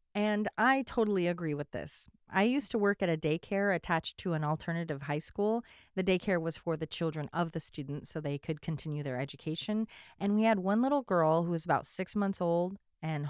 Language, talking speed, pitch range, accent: English, 210 wpm, 160-220 Hz, American